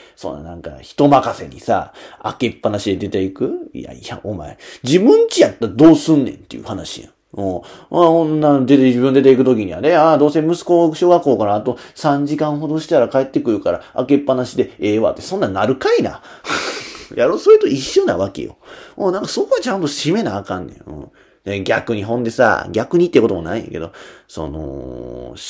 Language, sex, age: Japanese, male, 30-49